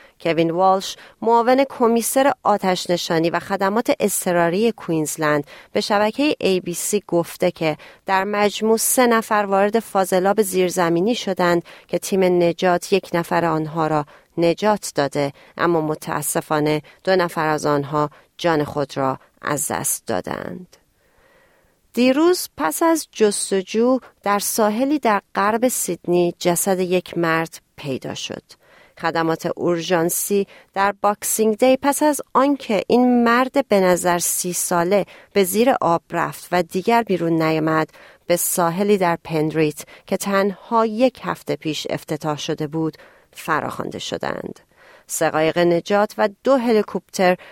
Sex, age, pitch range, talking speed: female, 40-59, 165-215 Hz, 125 wpm